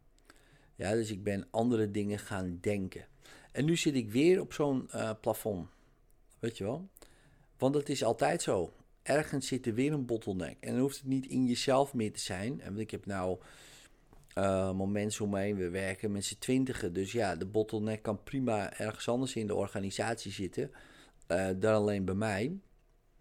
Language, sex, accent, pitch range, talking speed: Dutch, male, Dutch, 100-120 Hz, 180 wpm